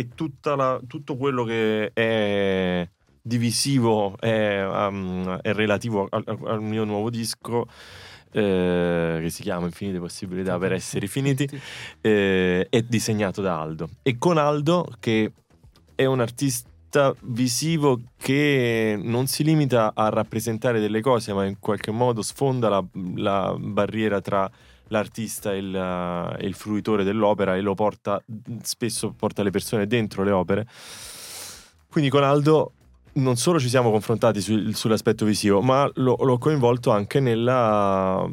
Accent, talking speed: native, 130 wpm